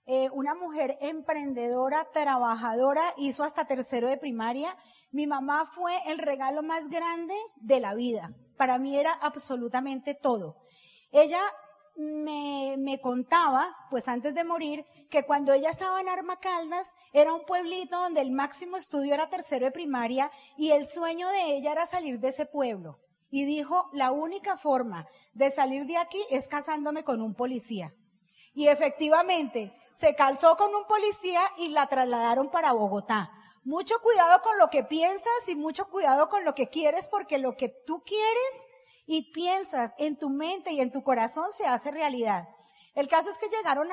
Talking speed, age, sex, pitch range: 165 wpm, 30-49, female, 260-335 Hz